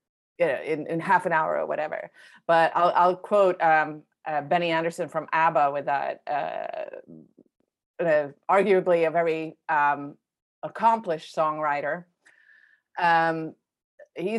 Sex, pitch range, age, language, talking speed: female, 155-180 Hz, 30-49, English, 130 wpm